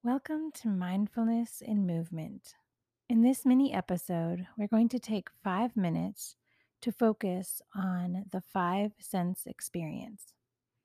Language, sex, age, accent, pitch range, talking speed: English, female, 30-49, American, 175-220 Hz, 120 wpm